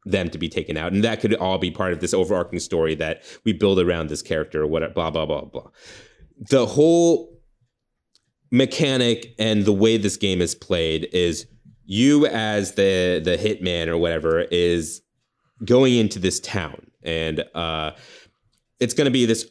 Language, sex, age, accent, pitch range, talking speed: English, male, 30-49, American, 85-115 Hz, 175 wpm